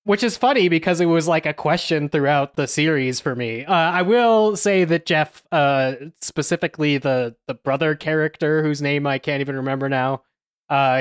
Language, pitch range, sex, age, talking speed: English, 140-175 Hz, male, 20-39, 185 wpm